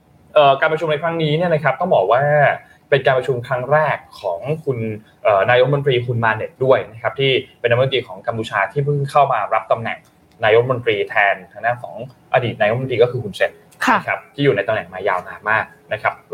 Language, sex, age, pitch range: Thai, male, 20-39, 130-165 Hz